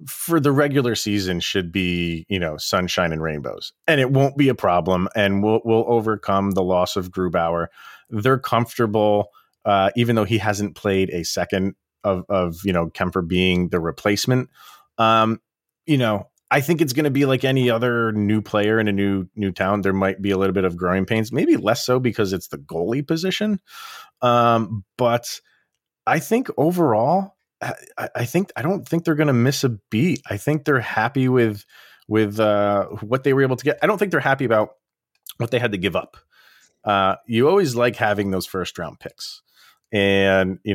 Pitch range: 100-145 Hz